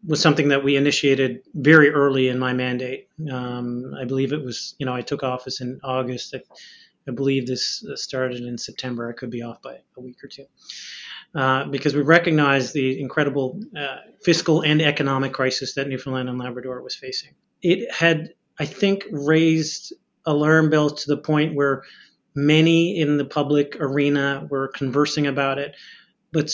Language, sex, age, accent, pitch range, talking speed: English, male, 30-49, American, 135-155 Hz, 170 wpm